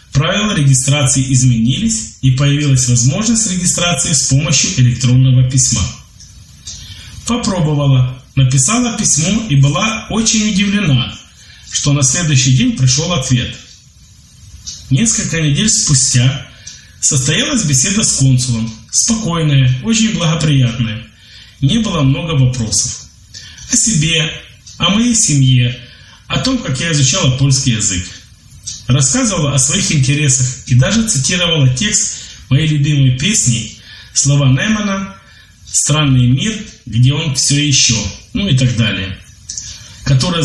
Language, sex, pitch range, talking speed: Polish, male, 120-155 Hz, 110 wpm